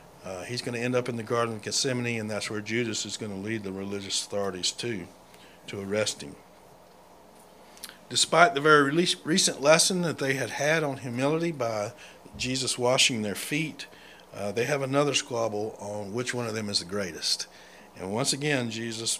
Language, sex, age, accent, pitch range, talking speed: English, male, 60-79, American, 110-140 Hz, 185 wpm